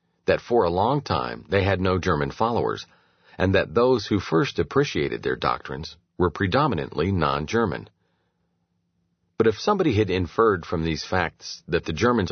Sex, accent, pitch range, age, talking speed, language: male, American, 85-105 Hz, 50-69, 155 wpm, English